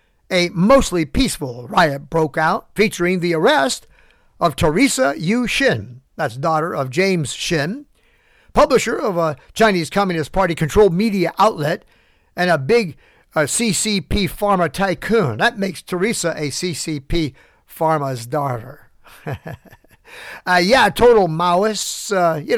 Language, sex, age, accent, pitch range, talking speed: English, male, 50-69, American, 155-210 Hz, 120 wpm